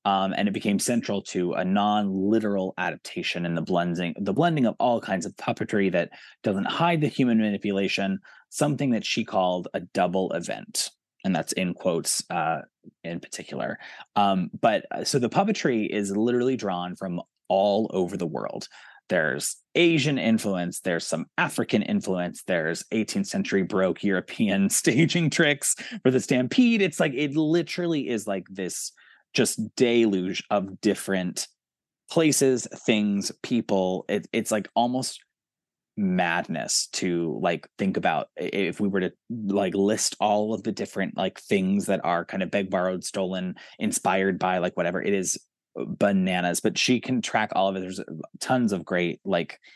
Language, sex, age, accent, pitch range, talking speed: English, male, 20-39, American, 95-130 Hz, 155 wpm